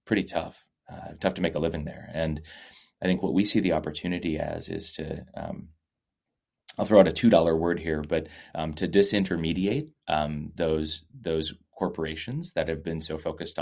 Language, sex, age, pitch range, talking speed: English, male, 30-49, 80-90 Hz, 180 wpm